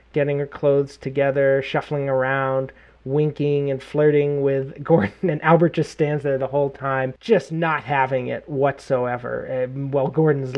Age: 30-49